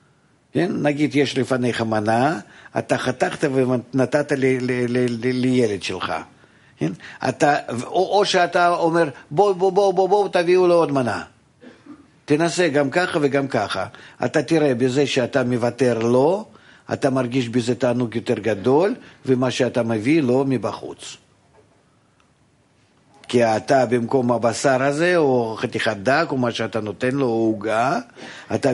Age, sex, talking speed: 50-69, male, 135 wpm